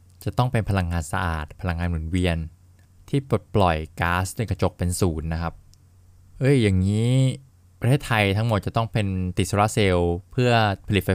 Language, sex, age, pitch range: Thai, male, 20-39, 90-105 Hz